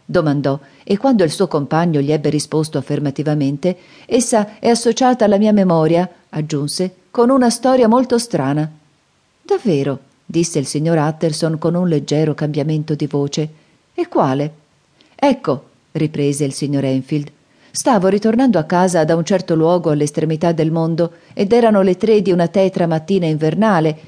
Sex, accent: female, native